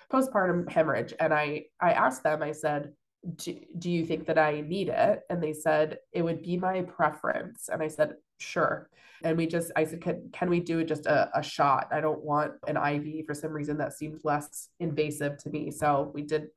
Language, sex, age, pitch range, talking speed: English, female, 20-39, 150-175 Hz, 215 wpm